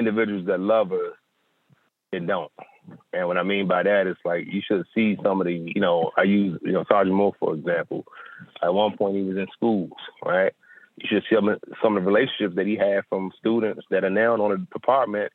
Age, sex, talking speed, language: 30-49, male, 220 wpm, English